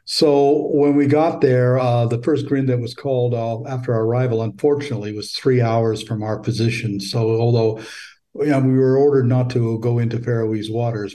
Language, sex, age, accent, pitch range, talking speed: English, male, 60-79, American, 110-125 Hz, 195 wpm